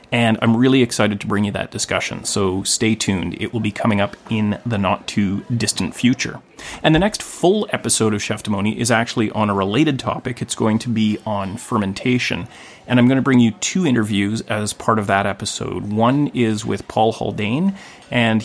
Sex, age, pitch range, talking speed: male, 30-49, 105-120 Hz, 195 wpm